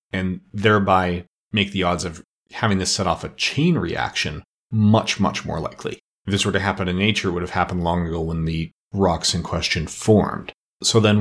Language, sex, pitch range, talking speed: English, male, 85-105 Hz, 205 wpm